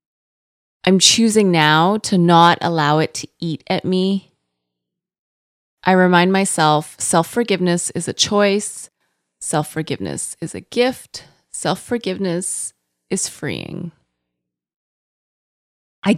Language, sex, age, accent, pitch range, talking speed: English, female, 20-39, American, 145-195 Hz, 95 wpm